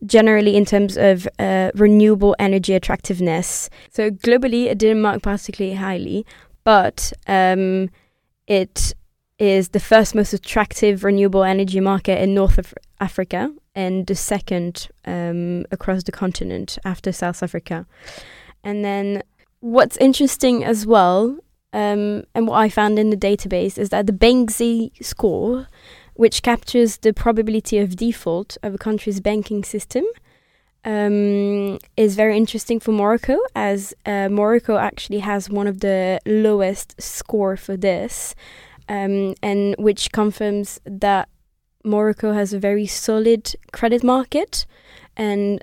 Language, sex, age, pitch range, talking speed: English, female, 20-39, 195-215 Hz, 135 wpm